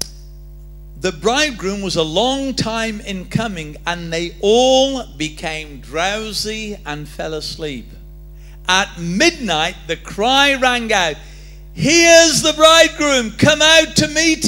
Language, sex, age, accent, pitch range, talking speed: English, male, 50-69, British, 155-215 Hz, 120 wpm